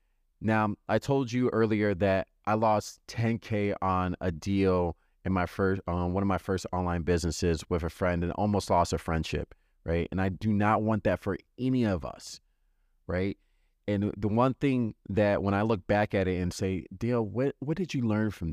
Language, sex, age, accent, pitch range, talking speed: English, male, 30-49, American, 85-110 Hz, 200 wpm